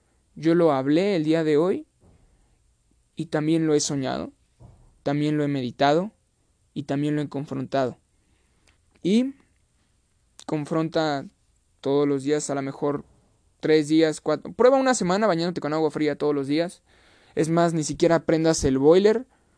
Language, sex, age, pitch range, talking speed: Spanish, male, 20-39, 140-185 Hz, 150 wpm